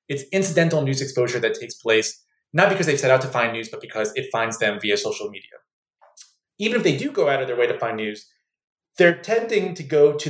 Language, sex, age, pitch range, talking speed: English, male, 30-49, 125-165 Hz, 235 wpm